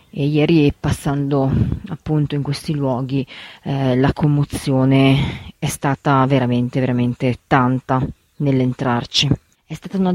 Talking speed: 110 wpm